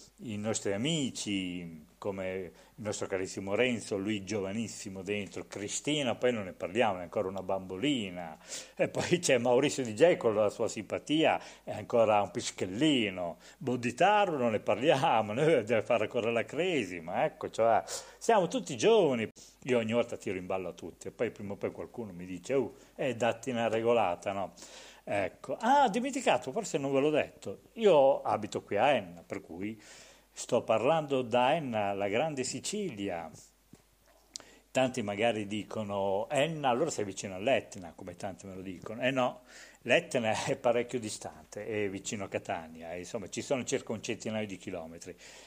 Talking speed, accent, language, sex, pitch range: 165 wpm, native, Italian, male, 95-130 Hz